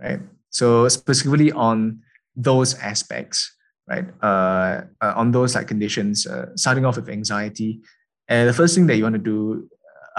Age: 20-39